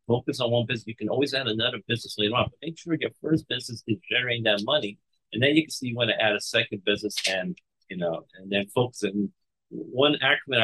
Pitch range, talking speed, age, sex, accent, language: 105-120 Hz, 245 wpm, 50-69, male, American, English